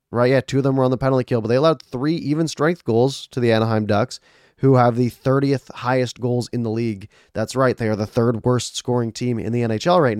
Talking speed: 255 wpm